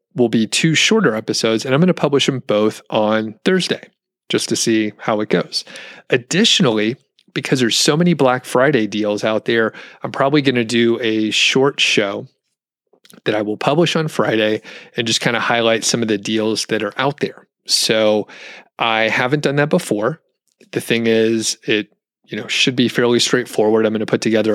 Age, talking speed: 30-49, 190 wpm